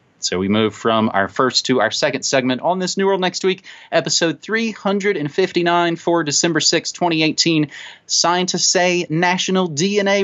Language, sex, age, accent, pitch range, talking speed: English, male, 30-49, American, 140-200 Hz, 150 wpm